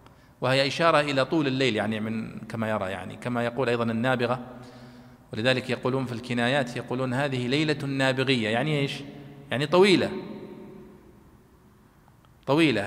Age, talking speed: 40-59, 125 wpm